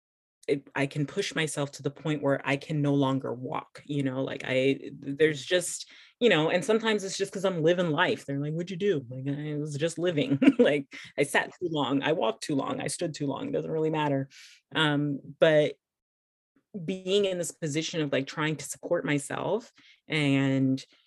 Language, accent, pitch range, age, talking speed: English, American, 135-160 Hz, 30-49, 195 wpm